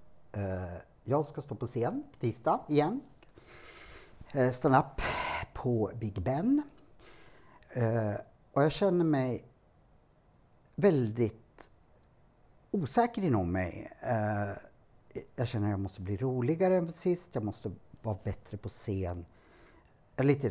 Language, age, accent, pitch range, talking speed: Swedish, 50-69, Norwegian, 105-155 Hz, 115 wpm